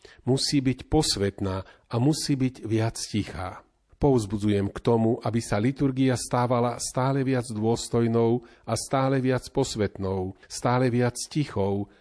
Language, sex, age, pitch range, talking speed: Slovak, male, 40-59, 105-130 Hz, 125 wpm